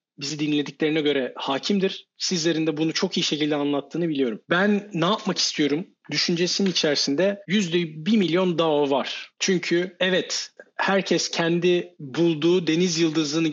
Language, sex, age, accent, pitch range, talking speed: Turkish, male, 40-59, native, 150-180 Hz, 135 wpm